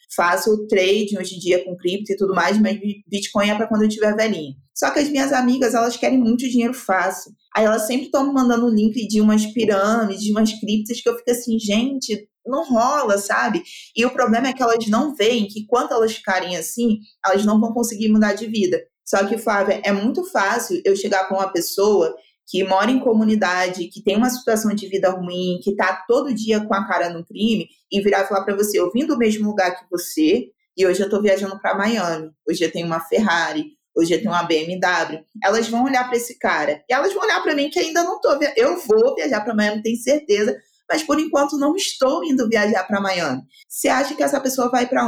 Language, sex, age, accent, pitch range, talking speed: Portuguese, female, 20-39, Brazilian, 195-250 Hz, 225 wpm